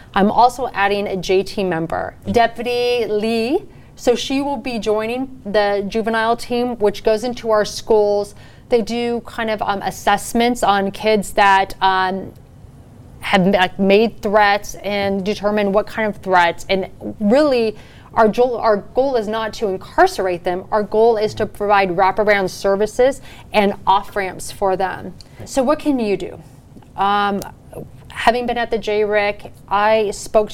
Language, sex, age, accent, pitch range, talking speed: English, female, 30-49, American, 190-225 Hz, 145 wpm